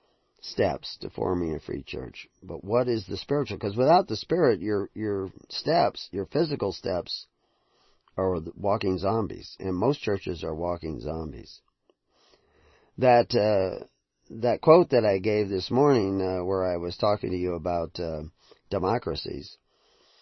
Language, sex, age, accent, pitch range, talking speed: English, male, 40-59, American, 85-115 Hz, 145 wpm